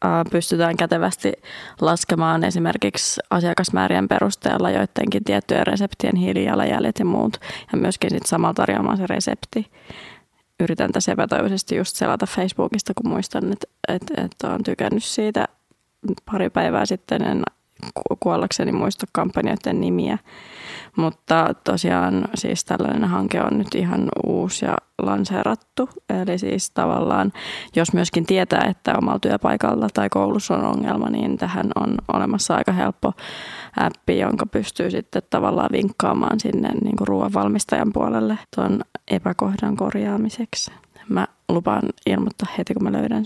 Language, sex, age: Finnish, female, 20-39